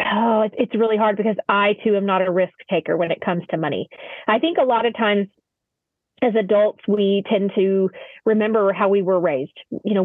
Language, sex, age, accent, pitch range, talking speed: English, female, 30-49, American, 185-215 Hz, 210 wpm